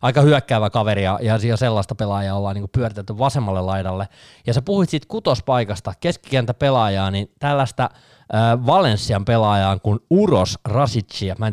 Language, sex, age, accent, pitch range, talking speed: Finnish, male, 20-39, native, 100-125 Hz, 140 wpm